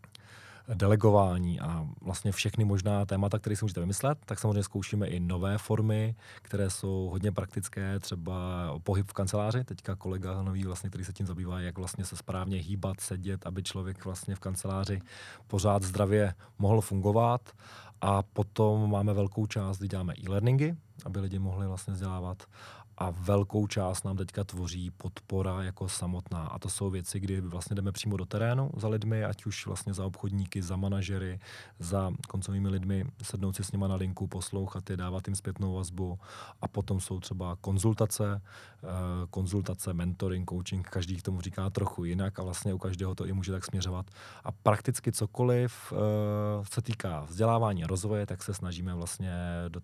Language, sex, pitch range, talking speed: Czech, male, 95-105 Hz, 165 wpm